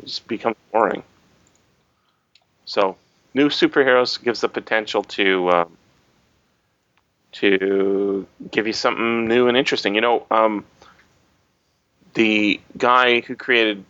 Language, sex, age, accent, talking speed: English, male, 30-49, American, 110 wpm